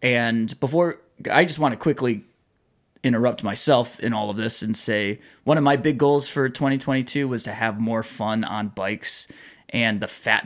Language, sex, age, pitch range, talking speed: English, male, 20-39, 110-140 Hz, 185 wpm